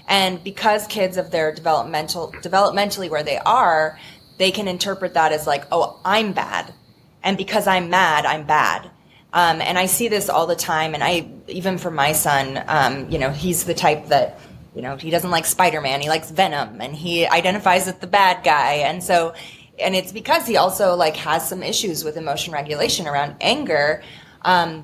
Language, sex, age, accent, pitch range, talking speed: English, female, 20-39, American, 155-185 Hz, 195 wpm